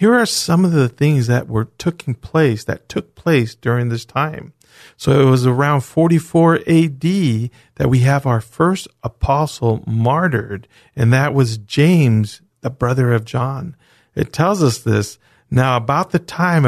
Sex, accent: male, American